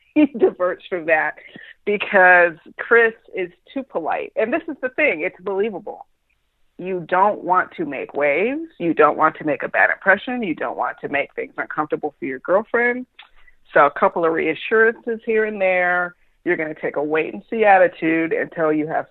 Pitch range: 155-210 Hz